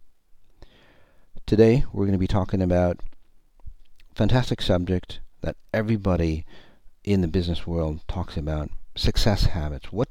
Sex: male